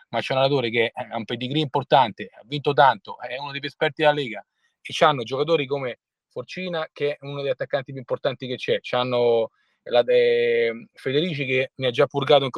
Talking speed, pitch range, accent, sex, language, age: 200 wpm, 120-165 Hz, native, male, Italian, 30-49